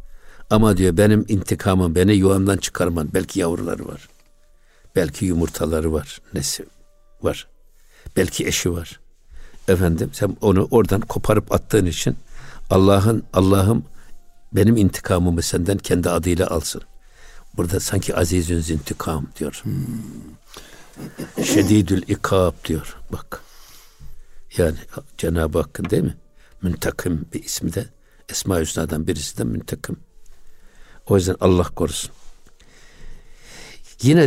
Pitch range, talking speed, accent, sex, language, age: 90-115 Hz, 110 wpm, native, male, Turkish, 60-79